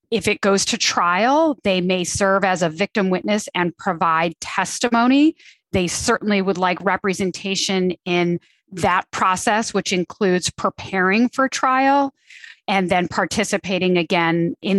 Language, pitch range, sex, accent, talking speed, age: English, 180-220 Hz, female, American, 135 wpm, 30-49